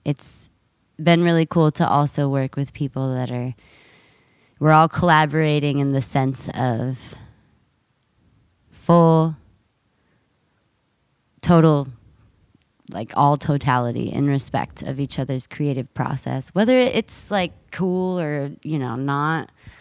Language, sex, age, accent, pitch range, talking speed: English, female, 20-39, American, 135-165 Hz, 115 wpm